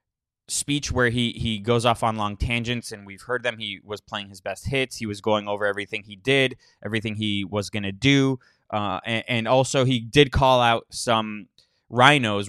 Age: 20-39